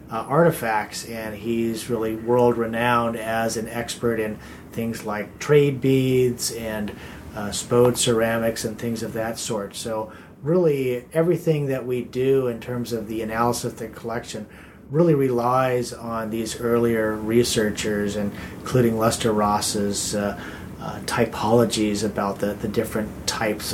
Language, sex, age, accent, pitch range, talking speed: English, male, 30-49, American, 110-130 Hz, 140 wpm